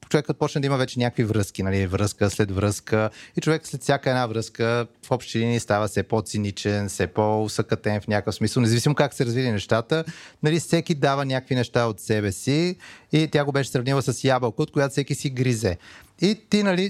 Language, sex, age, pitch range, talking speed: Bulgarian, male, 30-49, 110-150 Hz, 195 wpm